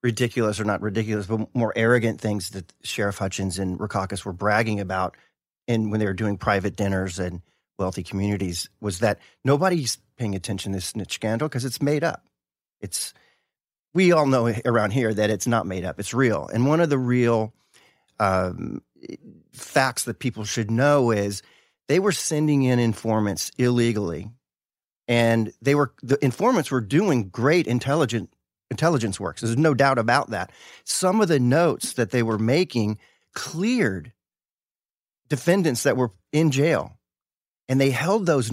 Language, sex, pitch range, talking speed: English, male, 105-140 Hz, 160 wpm